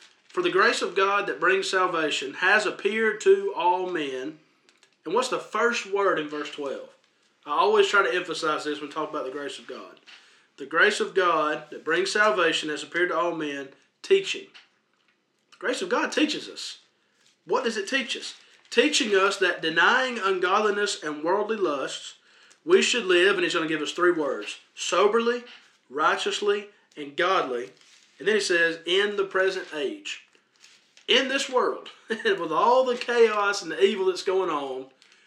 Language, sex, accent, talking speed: English, male, American, 175 wpm